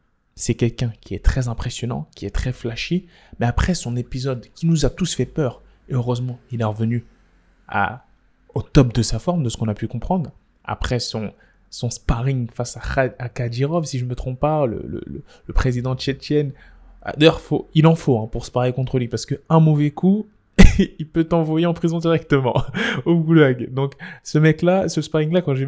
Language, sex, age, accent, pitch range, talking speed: French, male, 20-39, French, 120-155 Hz, 200 wpm